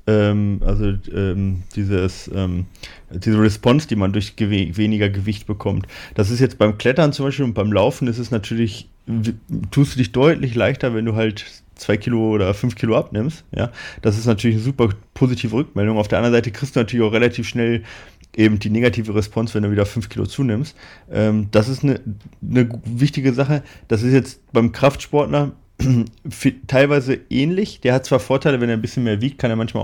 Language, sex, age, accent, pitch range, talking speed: German, male, 30-49, German, 105-125 Hz, 195 wpm